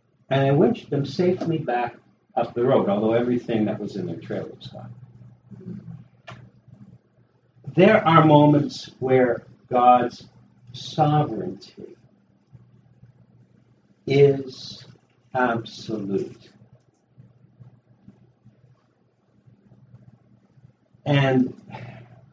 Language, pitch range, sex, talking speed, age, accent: English, 120-150 Hz, male, 75 wpm, 60-79, American